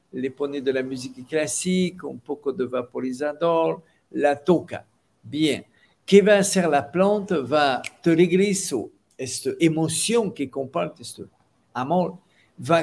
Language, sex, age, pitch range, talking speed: Spanish, male, 50-69, 145-185 Hz, 125 wpm